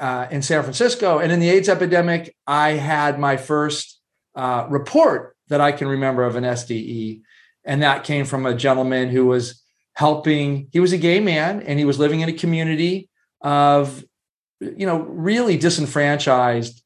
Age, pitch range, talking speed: 40-59, 135-165 Hz, 170 wpm